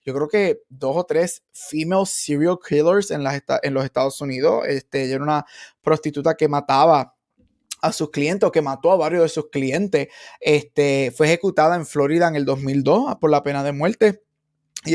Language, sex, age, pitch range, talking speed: Spanish, male, 20-39, 145-185 Hz, 195 wpm